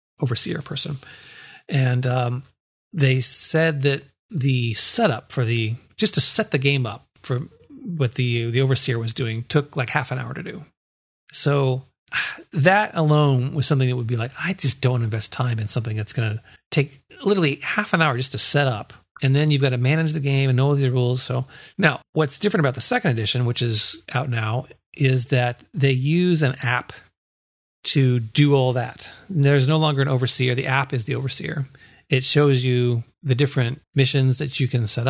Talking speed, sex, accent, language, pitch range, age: 195 wpm, male, American, English, 120-145 Hz, 40-59